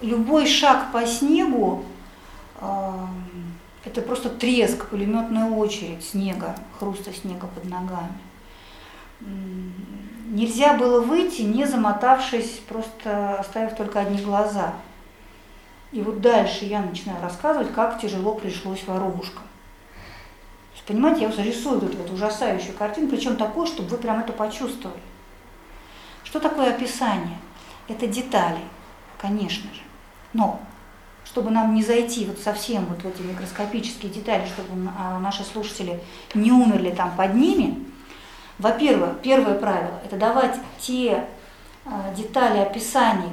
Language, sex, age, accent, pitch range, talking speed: Russian, female, 50-69, native, 195-245 Hz, 120 wpm